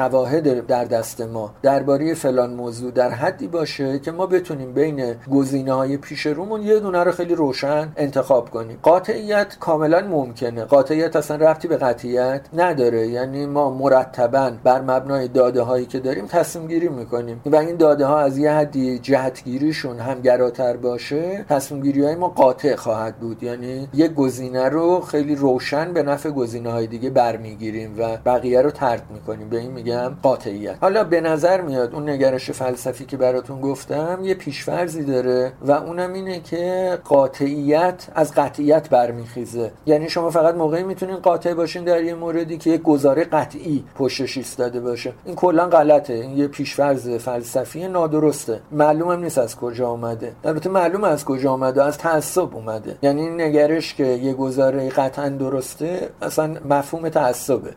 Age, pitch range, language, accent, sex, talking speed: 50-69, 125-160 Hz, English, Canadian, male, 160 wpm